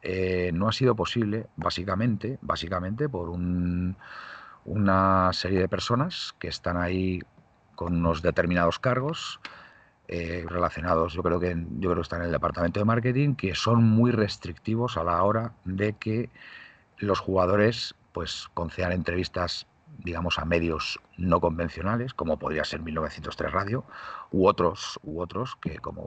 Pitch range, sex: 85-115 Hz, male